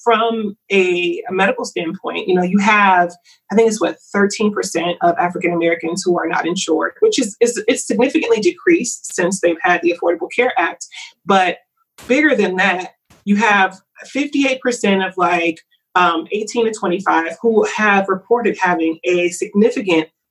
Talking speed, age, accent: 155 wpm, 30-49, American